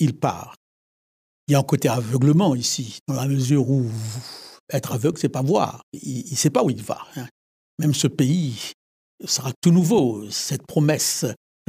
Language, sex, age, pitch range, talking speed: French, male, 60-79, 125-160 Hz, 180 wpm